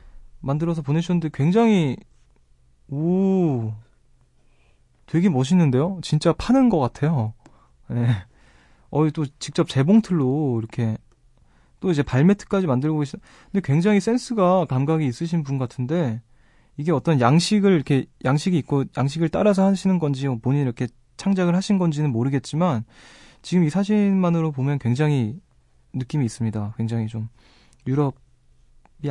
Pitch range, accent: 120-165 Hz, native